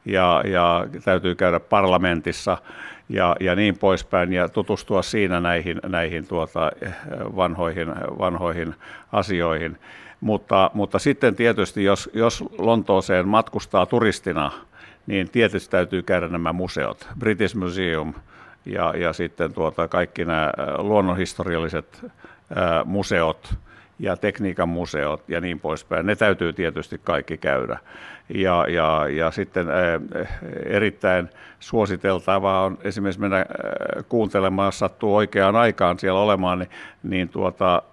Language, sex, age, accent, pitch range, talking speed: Finnish, male, 60-79, native, 85-100 Hz, 110 wpm